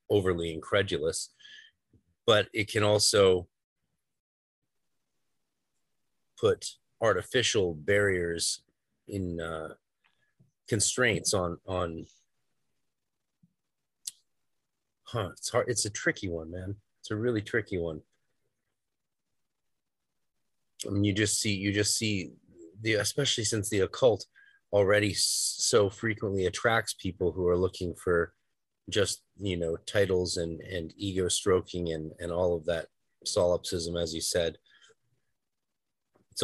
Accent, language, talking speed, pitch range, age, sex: American, English, 110 wpm, 85-105 Hz, 30-49, male